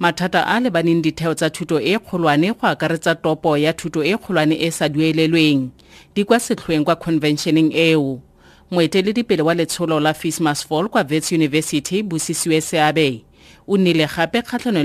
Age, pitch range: 30-49, 160-270 Hz